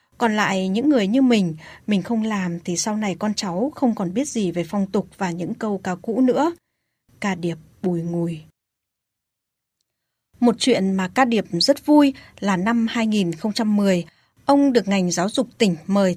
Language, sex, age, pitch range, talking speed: Vietnamese, female, 20-39, 185-240 Hz, 180 wpm